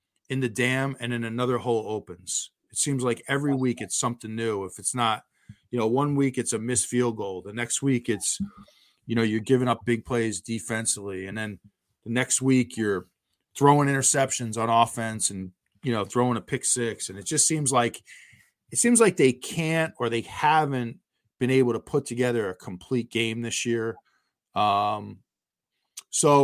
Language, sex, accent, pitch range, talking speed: English, male, American, 110-130 Hz, 185 wpm